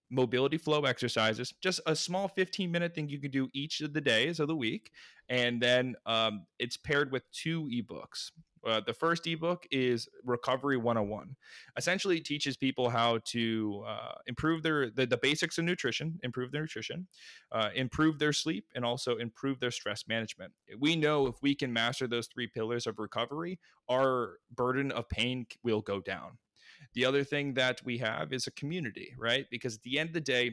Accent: American